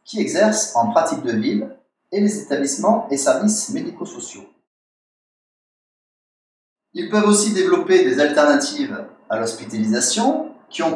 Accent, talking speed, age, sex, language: French, 120 wpm, 30-49, male, French